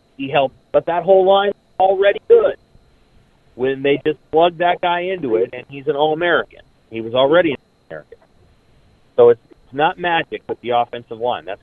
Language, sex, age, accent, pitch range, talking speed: English, male, 30-49, American, 135-180 Hz, 175 wpm